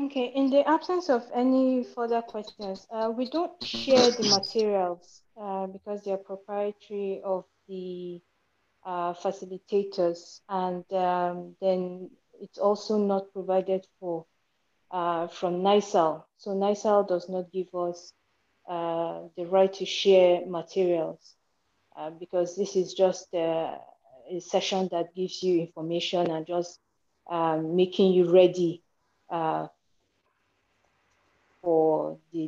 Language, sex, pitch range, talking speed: English, female, 165-195 Hz, 120 wpm